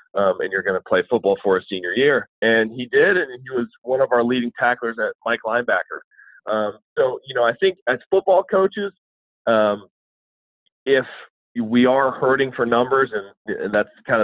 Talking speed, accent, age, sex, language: 190 wpm, American, 30-49, male, English